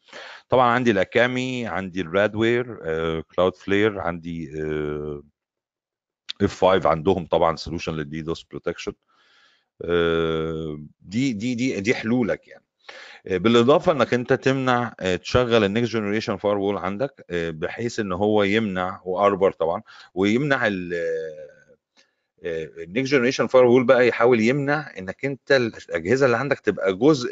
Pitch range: 85-125 Hz